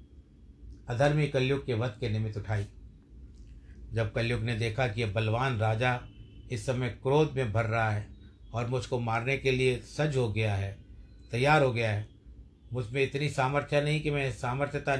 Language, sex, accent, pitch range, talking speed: Hindi, male, native, 100-130 Hz, 170 wpm